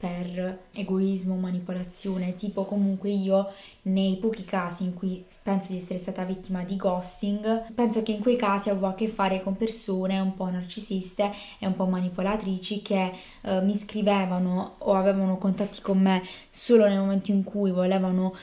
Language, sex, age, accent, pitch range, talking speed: Italian, female, 20-39, native, 190-210 Hz, 165 wpm